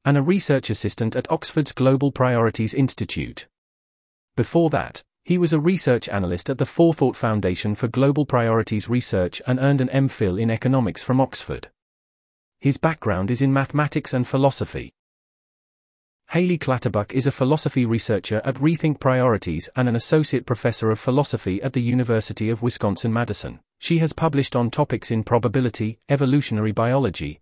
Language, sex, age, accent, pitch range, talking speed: English, male, 30-49, British, 110-140 Hz, 150 wpm